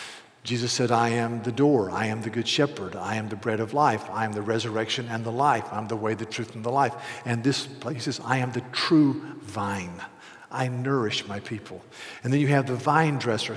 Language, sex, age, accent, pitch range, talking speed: English, male, 50-69, American, 120-160 Hz, 235 wpm